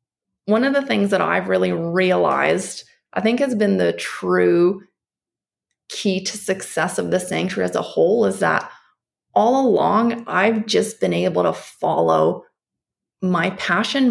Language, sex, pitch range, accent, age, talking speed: English, female, 180-220 Hz, American, 30-49, 150 wpm